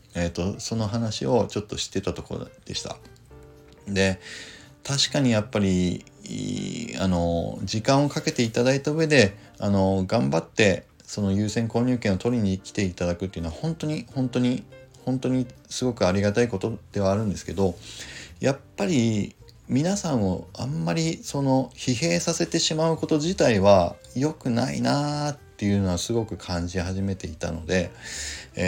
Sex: male